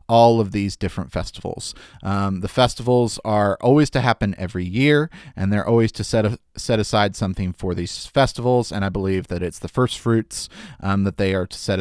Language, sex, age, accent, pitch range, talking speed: English, male, 30-49, American, 95-125 Hz, 205 wpm